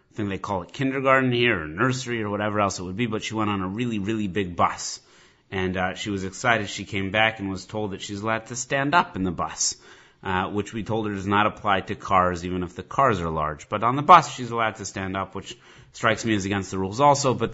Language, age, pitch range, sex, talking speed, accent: English, 30-49, 100-125 Hz, male, 265 wpm, American